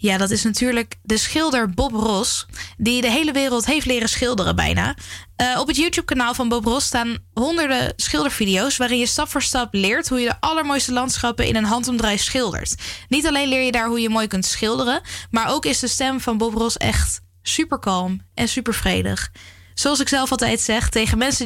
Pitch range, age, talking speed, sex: 195-260 Hz, 10-29, 195 wpm, female